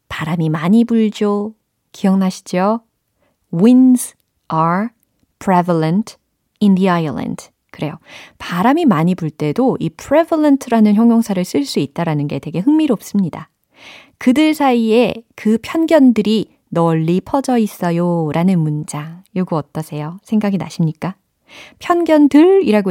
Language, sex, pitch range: Korean, female, 165-235 Hz